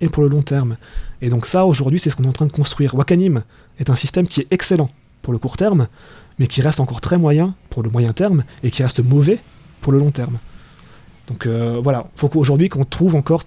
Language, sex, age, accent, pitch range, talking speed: French, male, 30-49, French, 125-160 Hz, 245 wpm